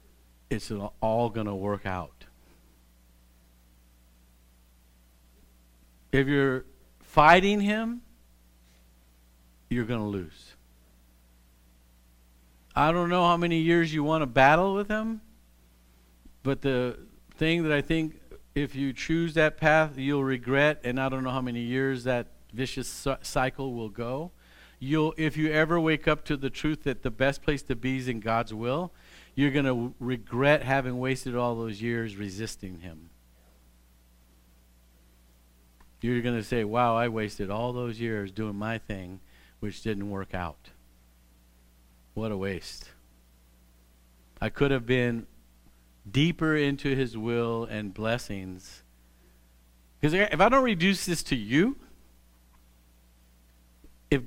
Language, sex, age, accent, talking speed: English, male, 50-69, American, 135 wpm